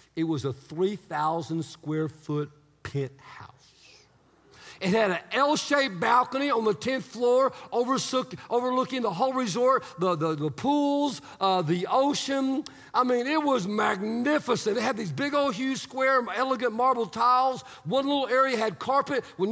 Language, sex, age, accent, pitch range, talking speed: English, male, 50-69, American, 165-270 Hz, 140 wpm